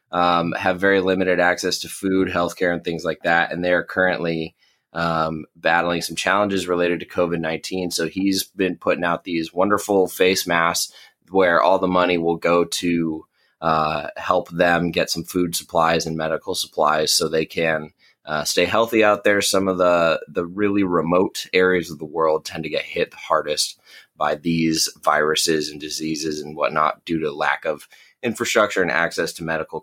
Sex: male